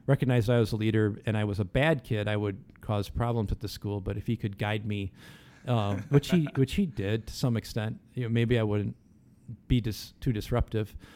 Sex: male